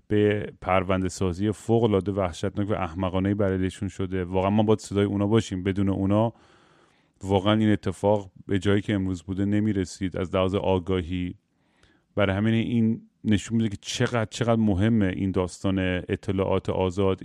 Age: 30-49